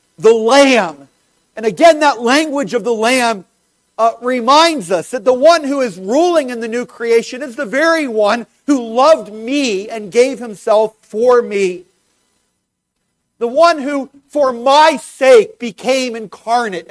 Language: English